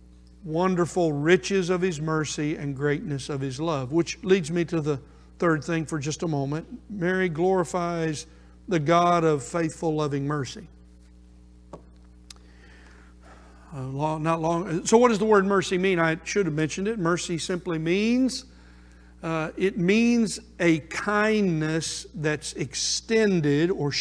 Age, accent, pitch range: 60-79, American, 140-180 Hz